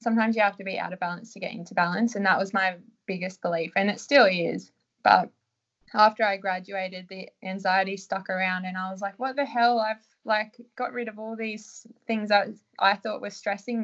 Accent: Australian